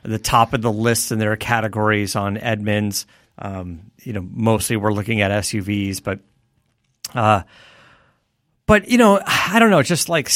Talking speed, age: 160 wpm, 40-59